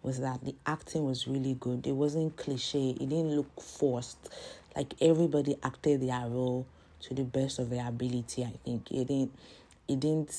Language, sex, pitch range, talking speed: English, female, 125-145 Hz, 180 wpm